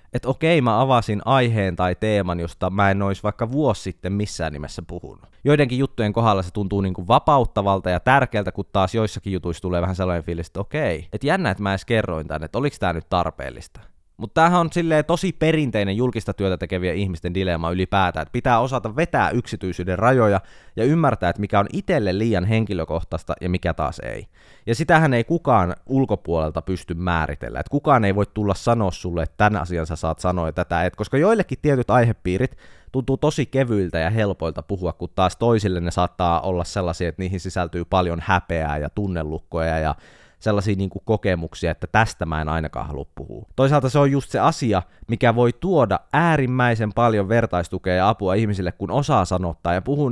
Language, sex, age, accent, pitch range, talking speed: Finnish, male, 20-39, native, 90-125 Hz, 190 wpm